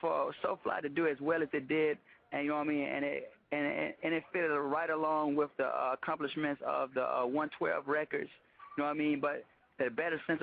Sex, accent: male, American